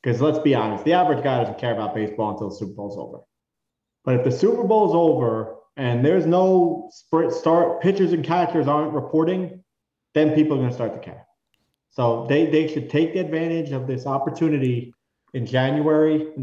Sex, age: male, 30-49